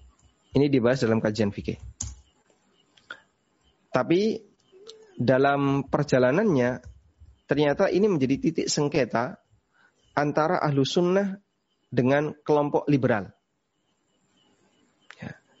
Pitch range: 115-145 Hz